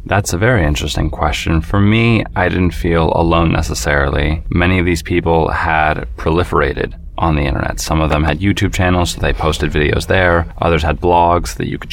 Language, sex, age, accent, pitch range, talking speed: English, male, 20-39, American, 80-90 Hz, 190 wpm